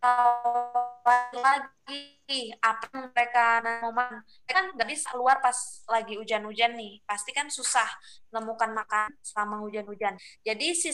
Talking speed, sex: 110 wpm, female